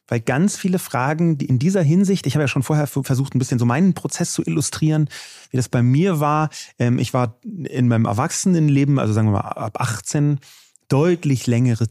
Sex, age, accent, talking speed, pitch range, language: male, 30-49, German, 195 wpm, 130-170 Hz, German